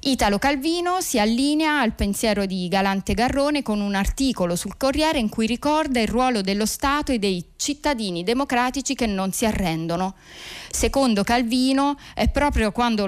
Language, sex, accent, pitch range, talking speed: Italian, female, native, 195-265 Hz, 155 wpm